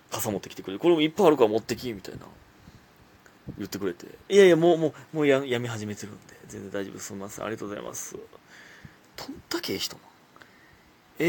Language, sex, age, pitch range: Japanese, male, 30-49, 100-160 Hz